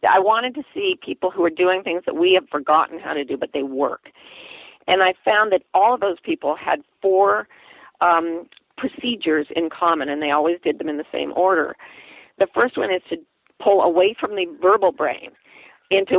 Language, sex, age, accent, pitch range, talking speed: English, female, 50-69, American, 165-245 Hz, 200 wpm